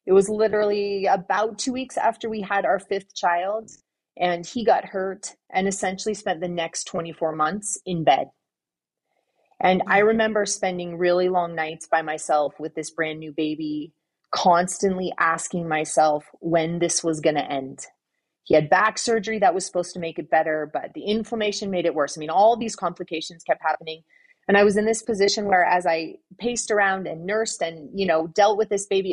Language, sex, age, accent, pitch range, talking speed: English, female, 30-49, American, 165-205 Hz, 190 wpm